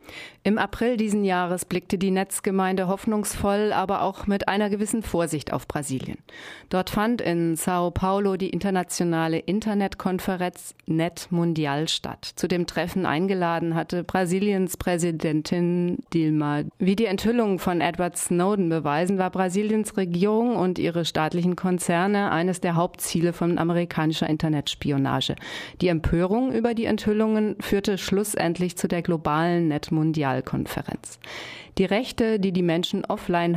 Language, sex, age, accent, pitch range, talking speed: German, female, 40-59, German, 160-195 Hz, 130 wpm